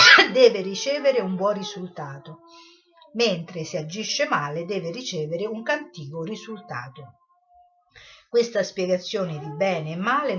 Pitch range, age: 165-230 Hz, 50-69